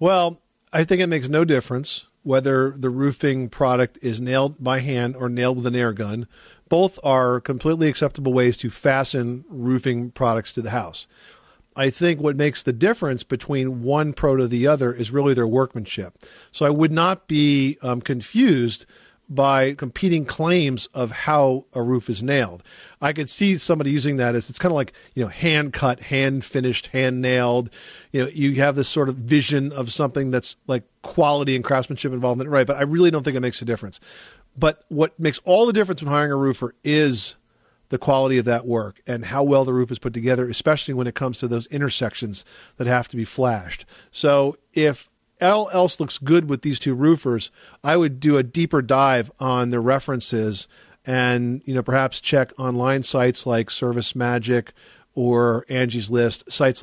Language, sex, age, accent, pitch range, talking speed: English, male, 50-69, American, 125-145 Hz, 190 wpm